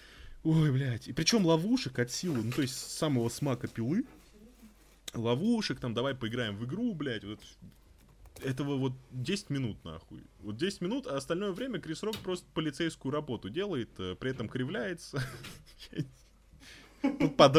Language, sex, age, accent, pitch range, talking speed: Russian, male, 20-39, native, 130-190 Hz, 145 wpm